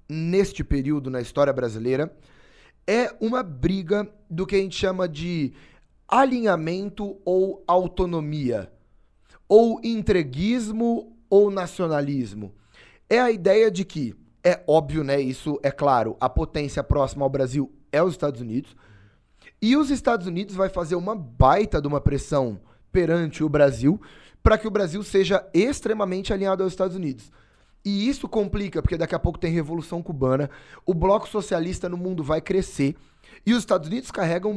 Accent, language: Brazilian, Portuguese